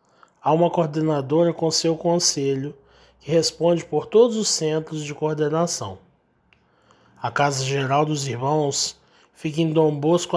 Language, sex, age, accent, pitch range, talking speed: Portuguese, male, 20-39, Brazilian, 135-160 Hz, 125 wpm